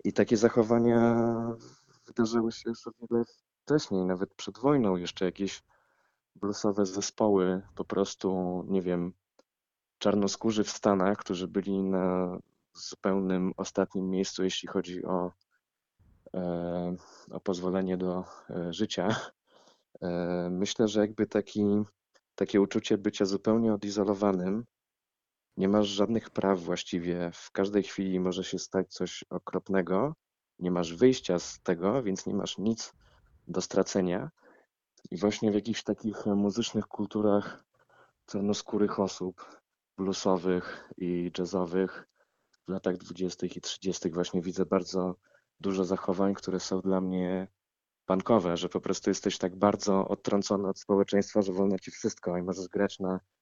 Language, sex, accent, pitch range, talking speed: Polish, male, native, 90-105 Hz, 125 wpm